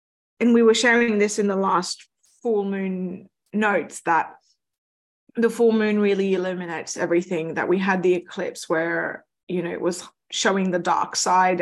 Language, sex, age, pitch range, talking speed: English, female, 20-39, 185-220 Hz, 165 wpm